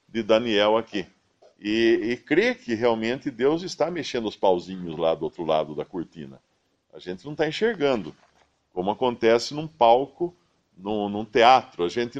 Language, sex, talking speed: Portuguese, male, 160 wpm